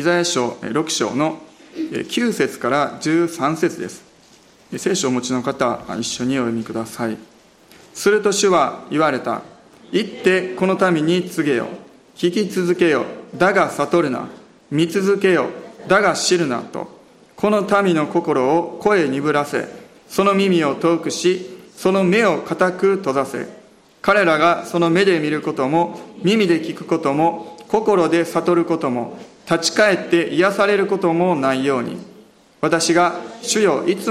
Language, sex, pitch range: Japanese, male, 155-190 Hz